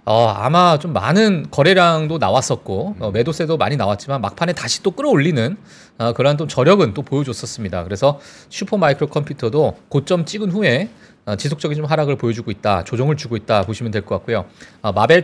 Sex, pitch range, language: male, 115-185 Hz, Korean